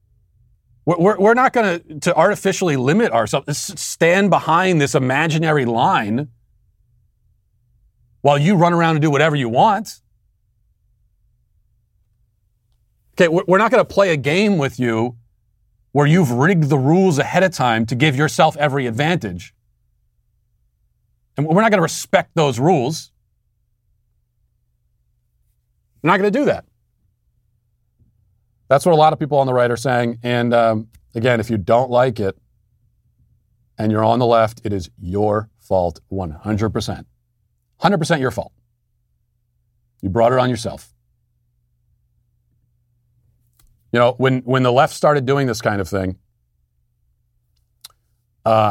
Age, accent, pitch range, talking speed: 40-59, American, 110-145 Hz, 135 wpm